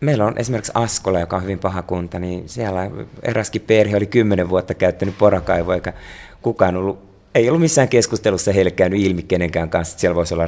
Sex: male